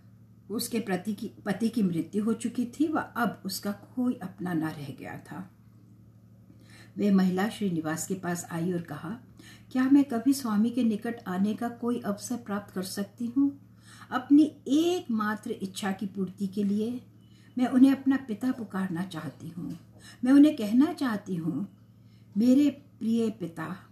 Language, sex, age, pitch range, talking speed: English, female, 60-79, 180-240 Hz, 150 wpm